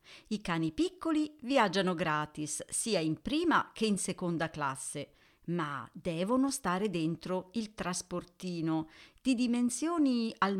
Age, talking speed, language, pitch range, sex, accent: 40-59, 120 wpm, Italian, 165-240 Hz, female, native